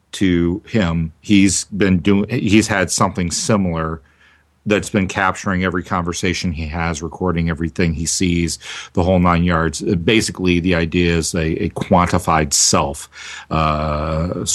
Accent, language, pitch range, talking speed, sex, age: American, English, 80-100 Hz, 135 wpm, male, 50-69